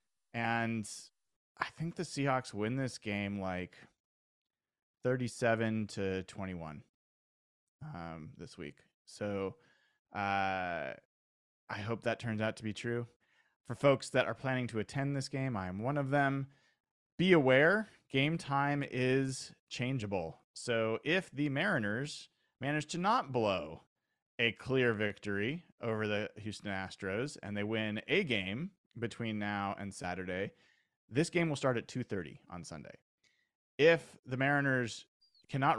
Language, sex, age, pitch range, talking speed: English, male, 30-49, 100-135 Hz, 135 wpm